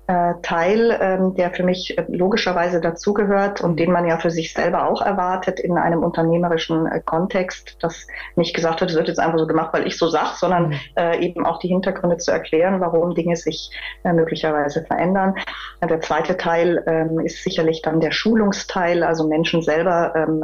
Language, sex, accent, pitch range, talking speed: German, female, German, 165-200 Hz, 165 wpm